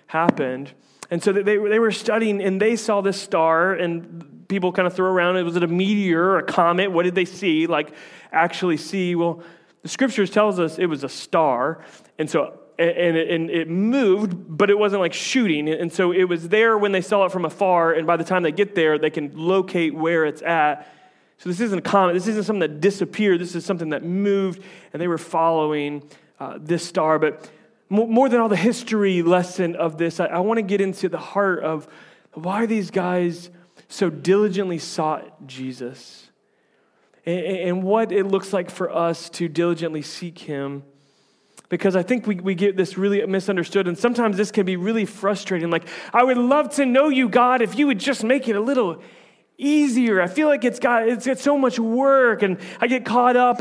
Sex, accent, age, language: male, American, 30-49, English